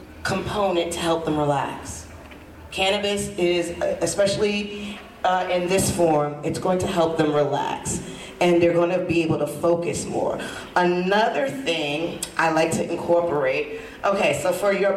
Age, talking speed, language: 40-59, 145 wpm, English